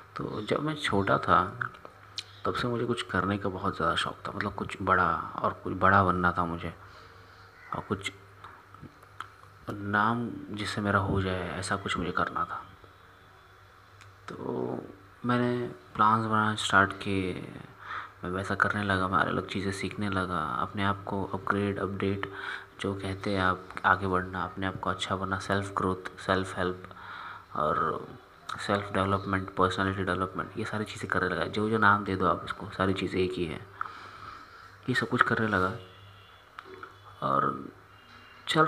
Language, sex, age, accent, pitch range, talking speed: Hindi, male, 20-39, native, 95-105 Hz, 155 wpm